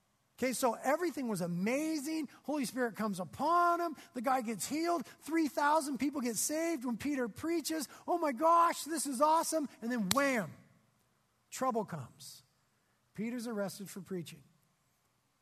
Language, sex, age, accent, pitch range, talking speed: English, male, 40-59, American, 180-245 Hz, 140 wpm